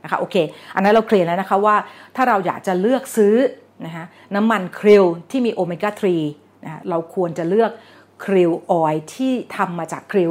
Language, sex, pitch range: Thai, female, 165-210 Hz